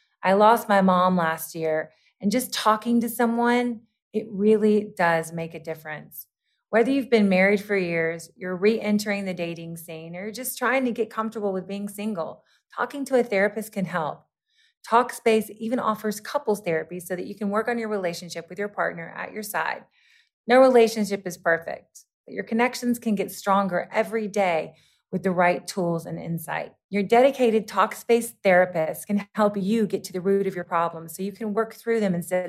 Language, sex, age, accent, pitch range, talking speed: English, female, 30-49, American, 185-230 Hz, 190 wpm